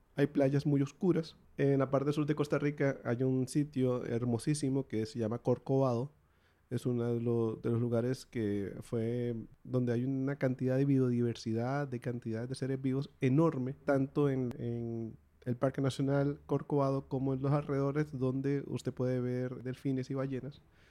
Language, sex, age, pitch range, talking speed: Spanish, male, 30-49, 120-145 Hz, 165 wpm